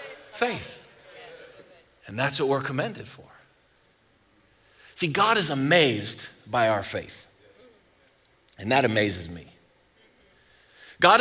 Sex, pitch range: male, 140-190 Hz